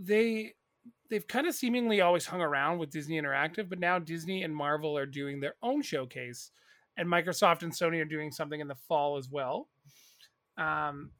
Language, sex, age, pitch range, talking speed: English, male, 30-49, 155-205 Hz, 180 wpm